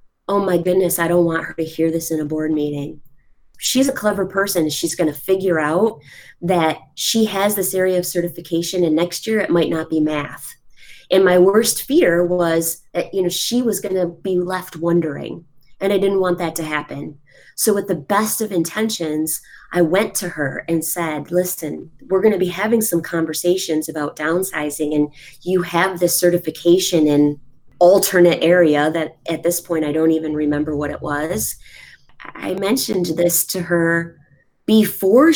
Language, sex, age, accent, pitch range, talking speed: English, female, 30-49, American, 160-195 Hz, 180 wpm